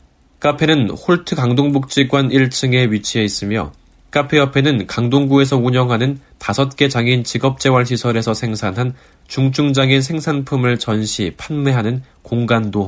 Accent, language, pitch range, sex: native, Korean, 100-140 Hz, male